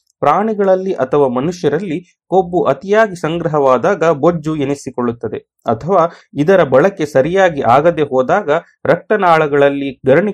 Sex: male